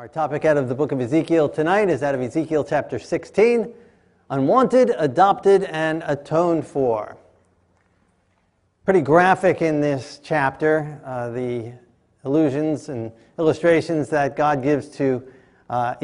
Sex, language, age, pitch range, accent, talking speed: male, English, 40-59, 150-210 Hz, American, 130 wpm